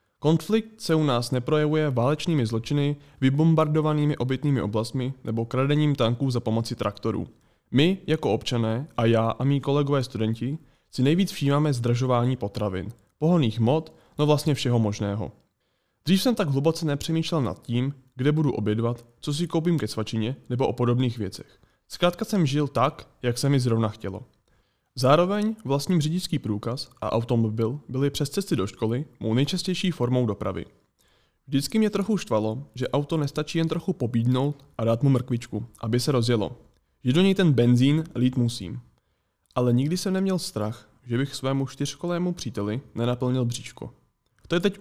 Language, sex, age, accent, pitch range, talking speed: Czech, male, 20-39, native, 115-155 Hz, 160 wpm